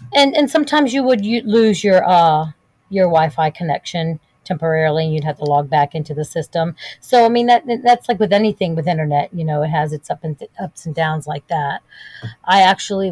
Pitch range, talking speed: 160-195 Hz, 205 wpm